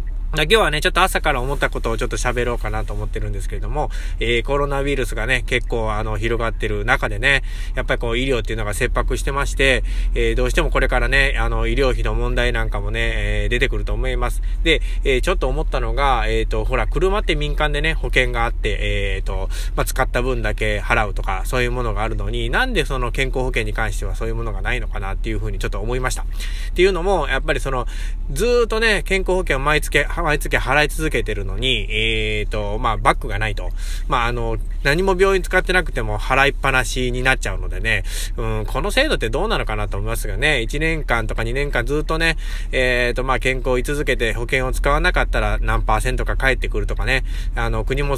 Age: 20-39